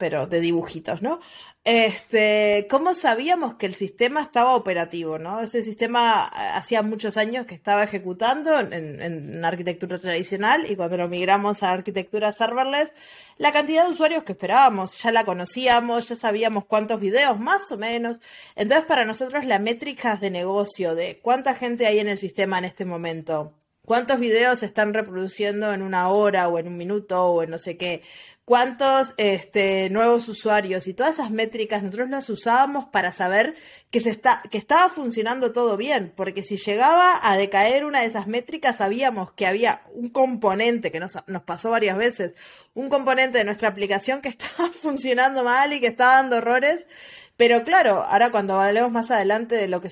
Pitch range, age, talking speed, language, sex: 195-250 Hz, 20-39, 180 wpm, Spanish, female